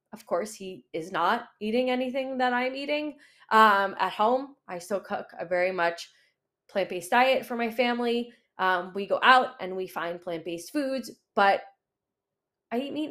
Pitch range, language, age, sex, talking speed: 190-255 Hz, English, 20-39, female, 170 wpm